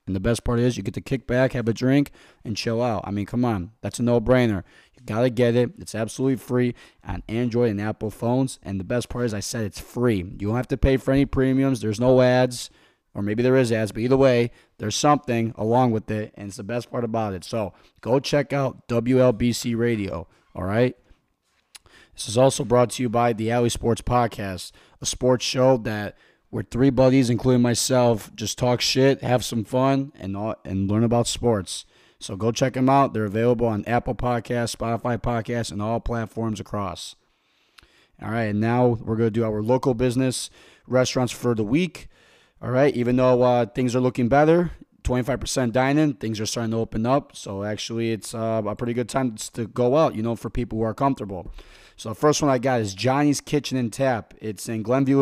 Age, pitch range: 20-39, 110-130 Hz